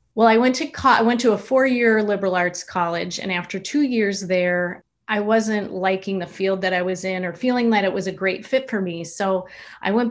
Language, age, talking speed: English, 30-49, 235 wpm